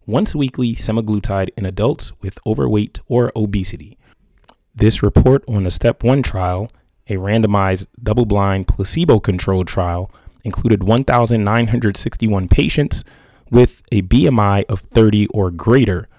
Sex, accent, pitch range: male, American, 95-115 Hz